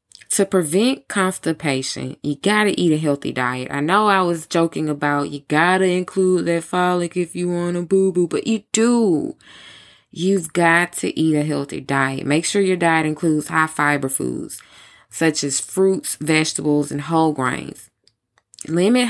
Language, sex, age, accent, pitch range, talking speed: English, female, 20-39, American, 145-185 Hz, 165 wpm